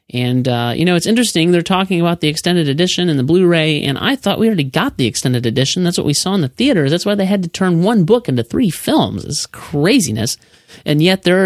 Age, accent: 30-49, American